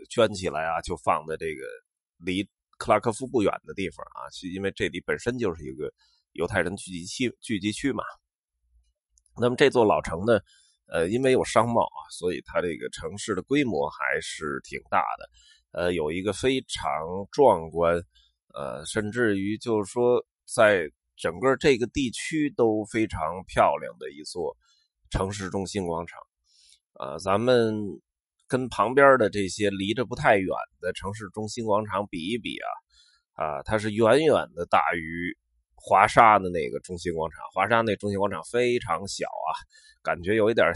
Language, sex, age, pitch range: Chinese, male, 20-39, 90-150 Hz